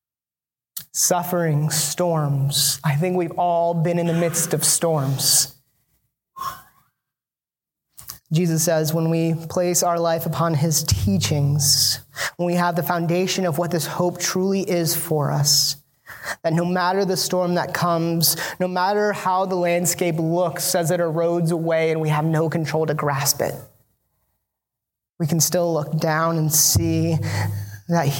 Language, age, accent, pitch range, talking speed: English, 20-39, American, 150-185 Hz, 145 wpm